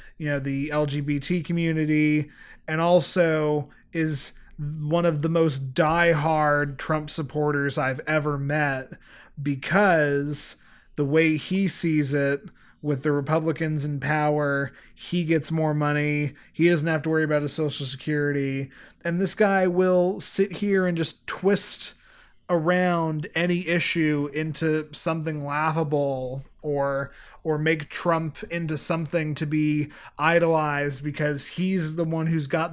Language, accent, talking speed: English, American, 135 wpm